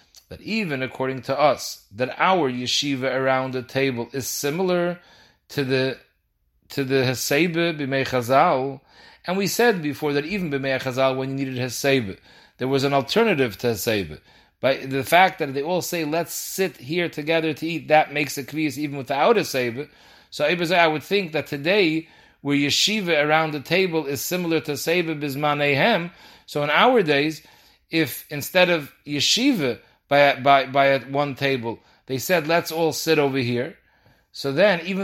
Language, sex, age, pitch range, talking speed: English, male, 40-59, 135-170 Hz, 165 wpm